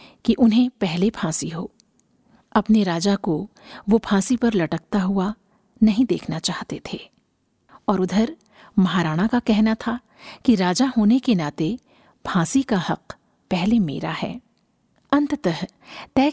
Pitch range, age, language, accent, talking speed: 195-245 Hz, 50-69, Hindi, native, 130 wpm